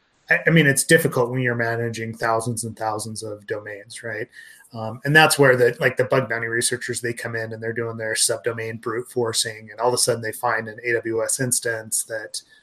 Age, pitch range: 30-49, 115-145 Hz